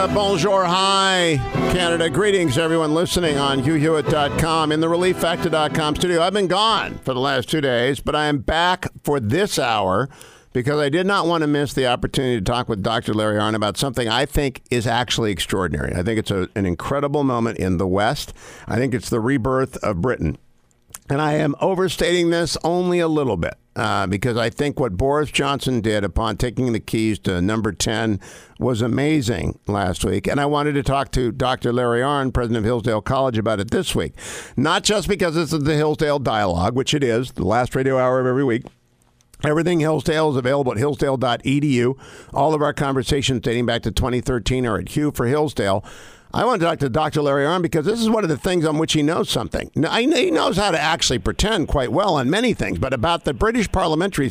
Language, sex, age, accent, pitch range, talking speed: English, male, 50-69, American, 115-160 Hz, 205 wpm